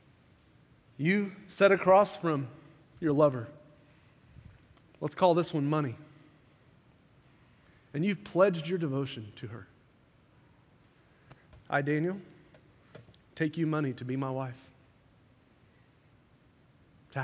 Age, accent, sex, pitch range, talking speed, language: 30-49, American, male, 130-175 Hz, 100 wpm, English